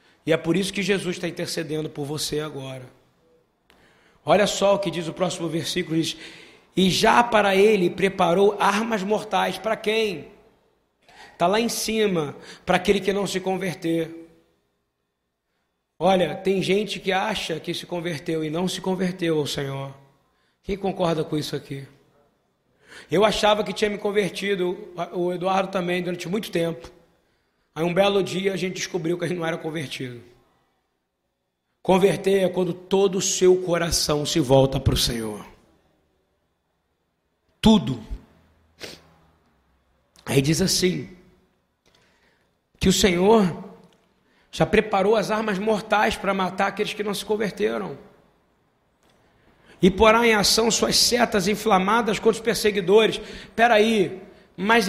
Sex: male